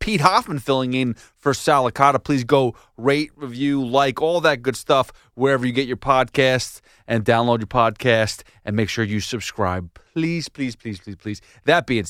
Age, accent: 30-49, American